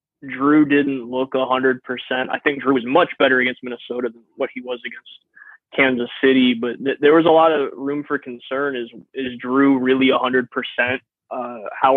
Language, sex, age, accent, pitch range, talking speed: English, male, 20-39, American, 125-140 Hz, 175 wpm